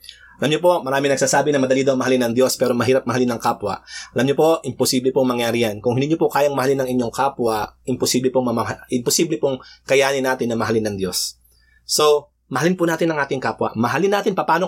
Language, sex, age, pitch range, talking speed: Filipino, male, 30-49, 120-165 Hz, 220 wpm